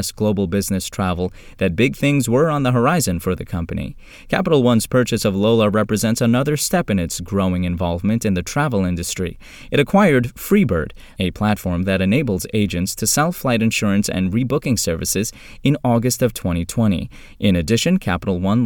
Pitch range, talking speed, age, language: 95-125 Hz, 165 wpm, 20-39, English